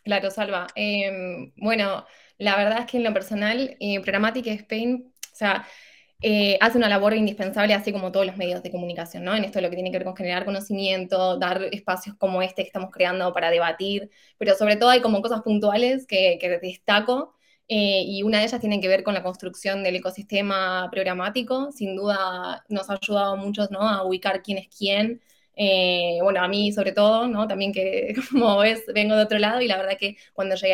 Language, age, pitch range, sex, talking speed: Spanish, 20-39, 190-215 Hz, female, 210 wpm